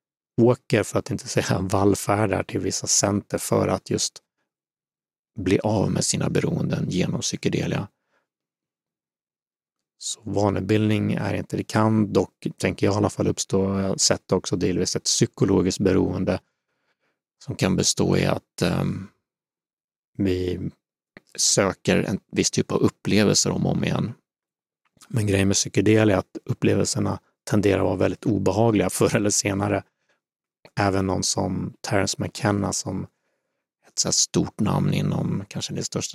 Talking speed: 140 wpm